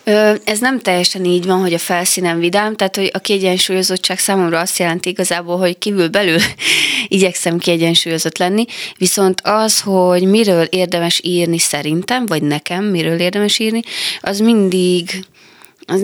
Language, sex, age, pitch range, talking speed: Hungarian, female, 20-39, 165-205 Hz, 140 wpm